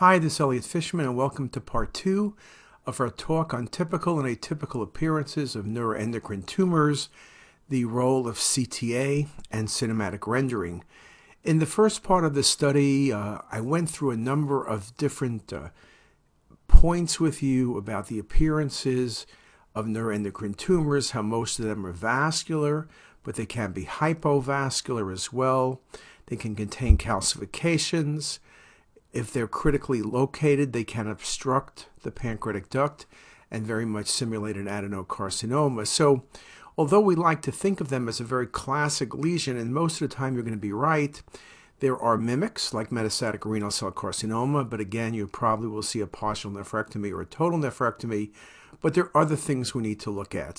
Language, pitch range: English, 110-150 Hz